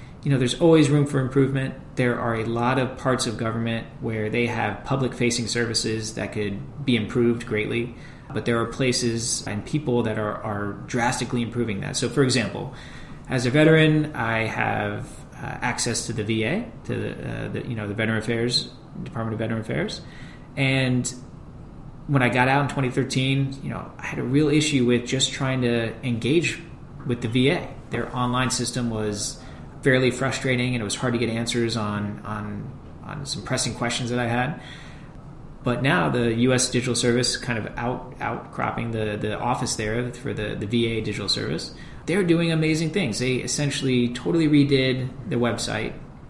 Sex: male